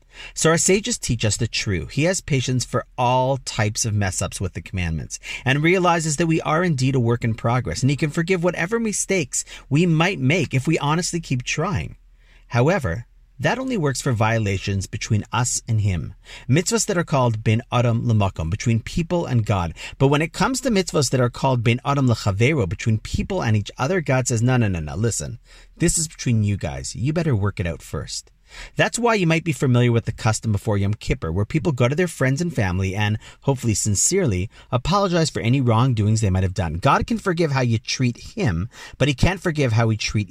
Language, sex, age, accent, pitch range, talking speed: English, male, 40-59, American, 110-160 Hz, 215 wpm